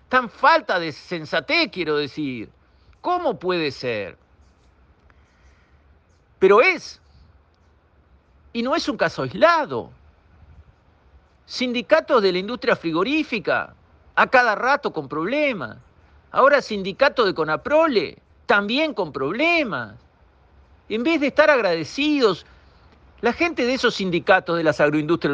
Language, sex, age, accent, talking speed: Spanish, male, 50-69, Argentinian, 110 wpm